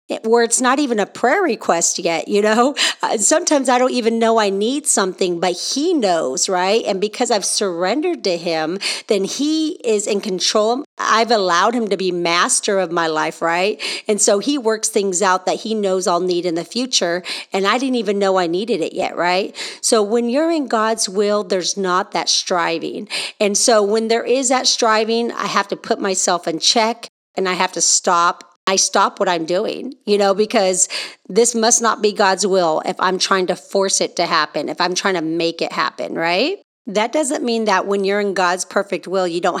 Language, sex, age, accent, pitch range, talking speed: English, female, 40-59, American, 180-230 Hz, 210 wpm